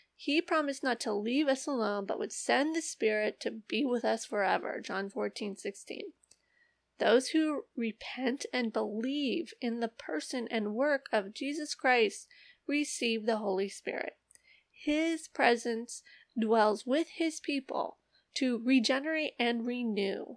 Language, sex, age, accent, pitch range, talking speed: English, female, 30-49, American, 215-285 Hz, 140 wpm